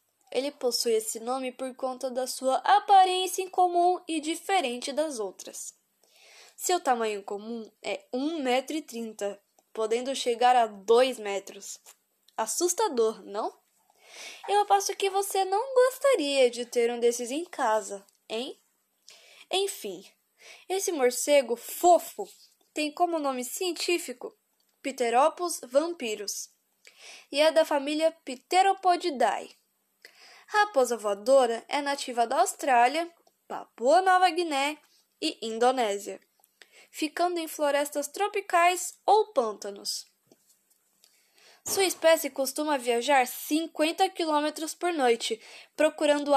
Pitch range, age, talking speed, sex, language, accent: 250-355 Hz, 10-29, 100 wpm, female, Portuguese, Brazilian